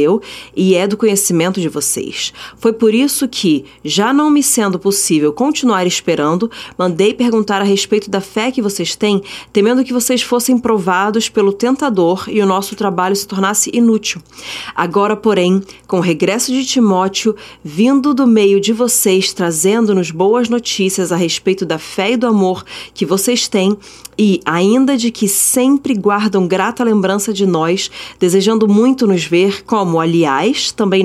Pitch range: 180-225 Hz